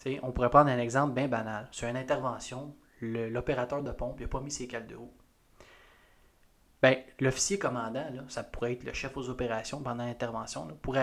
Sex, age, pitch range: male, 20-39, 125-150 Hz